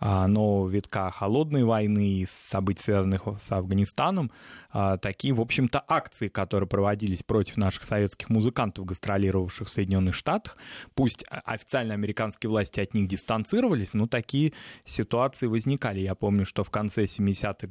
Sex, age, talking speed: male, 20-39, 135 wpm